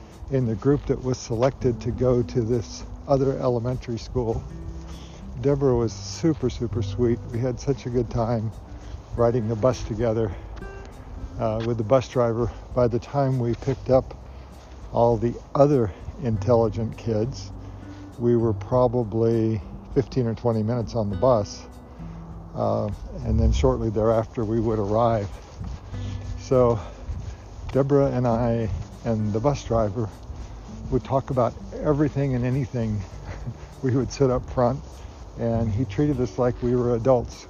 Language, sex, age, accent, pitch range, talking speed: English, male, 60-79, American, 100-125 Hz, 140 wpm